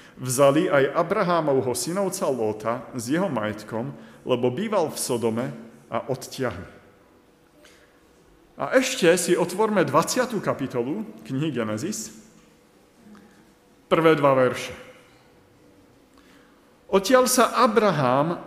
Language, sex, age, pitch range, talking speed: Slovak, male, 50-69, 130-195 Hz, 90 wpm